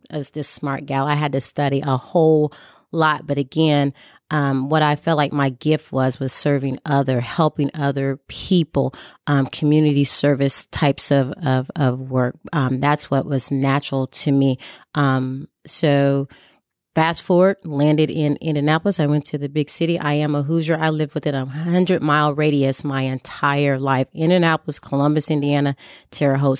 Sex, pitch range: female, 135-160 Hz